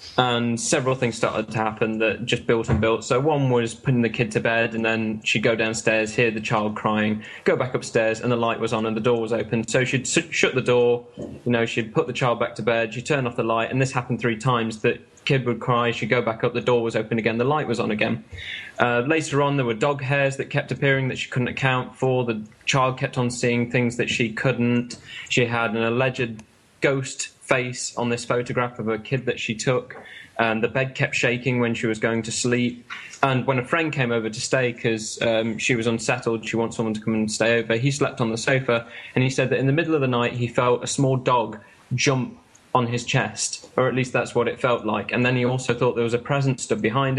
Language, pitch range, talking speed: English, 115-130 Hz, 250 wpm